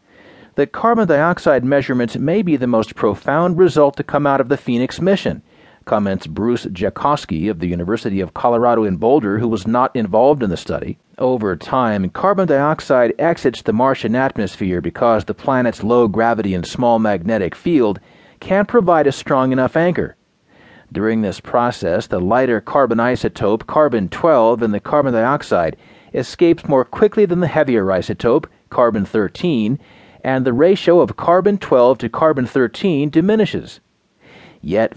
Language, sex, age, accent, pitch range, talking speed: English, male, 40-59, American, 115-160 Hz, 150 wpm